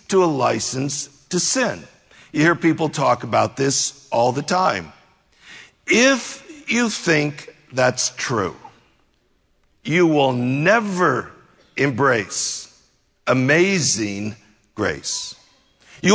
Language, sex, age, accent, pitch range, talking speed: English, male, 60-79, American, 145-200 Hz, 95 wpm